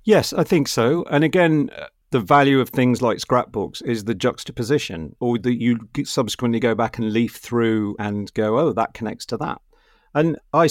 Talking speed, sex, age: 185 wpm, male, 50-69